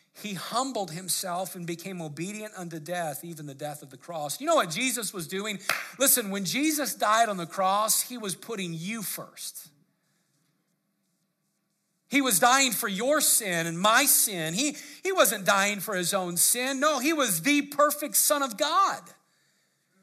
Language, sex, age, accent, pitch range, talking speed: English, male, 50-69, American, 160-200 Hz, 170 wpm